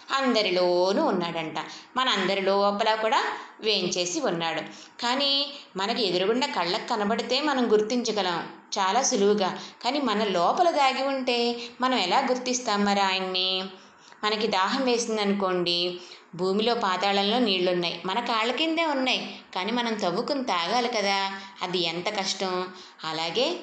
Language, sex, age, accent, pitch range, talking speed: Telugu, female, 20-39, native, 180-230 Hz, 115 wpm